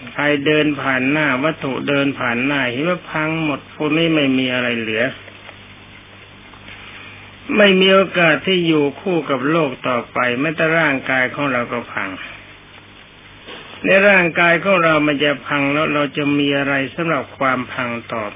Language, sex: Thai, male